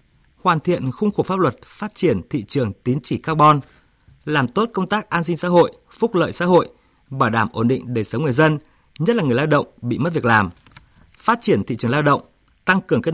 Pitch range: 120-170 Hz